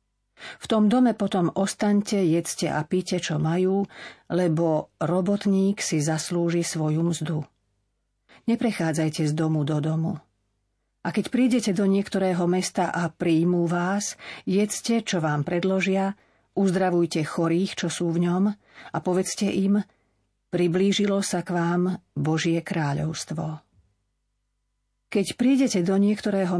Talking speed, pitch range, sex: 120 wpm, 155-190 Hz, female